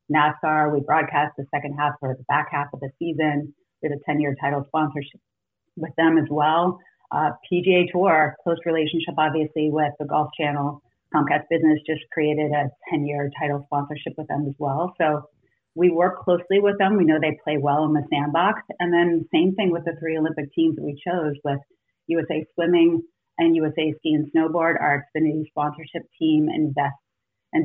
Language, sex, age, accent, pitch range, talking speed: English, female, 30-49, American, 145-165 Hz, 180 wpm